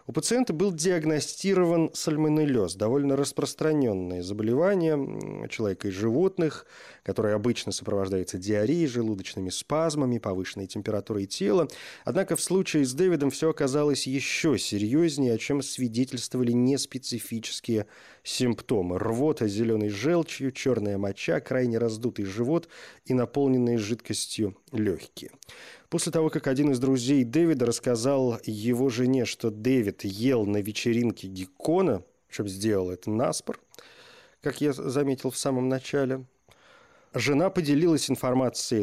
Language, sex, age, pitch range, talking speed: Russian, male, 30-49, 110-145 Hz, 115 wpm